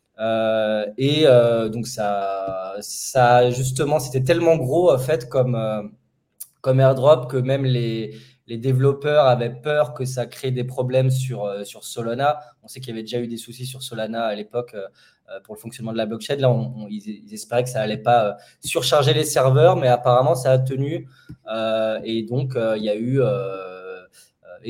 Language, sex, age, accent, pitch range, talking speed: English, male, 20-39, French, 115-135 Hz, 190 wpm